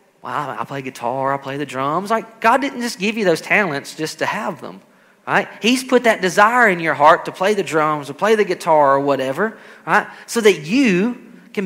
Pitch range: 165-230 Hz